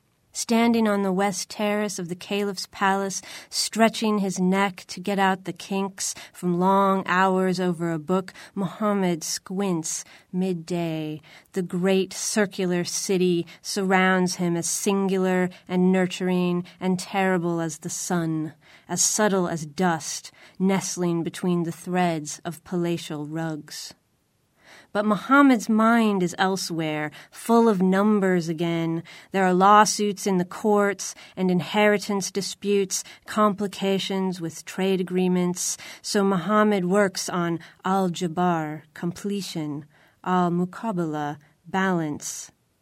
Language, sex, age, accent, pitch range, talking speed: English, female, 30-49, American, 175-195 Hz, 115 wpm